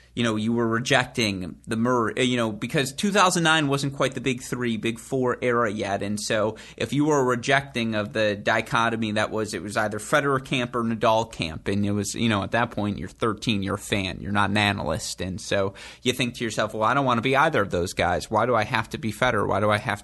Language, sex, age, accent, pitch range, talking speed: English, male, 30-49, American, 105-130 Hz, 255 wpm